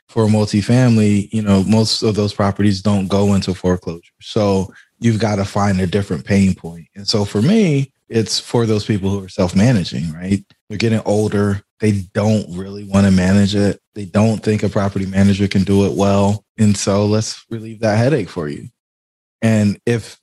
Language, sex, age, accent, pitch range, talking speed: English, male, 20-39, American, 100-115 Hz, 195 wpm